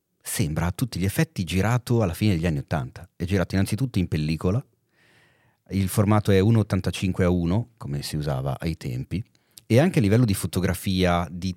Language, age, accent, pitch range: Italian, 30-49, native, 85-115 Hz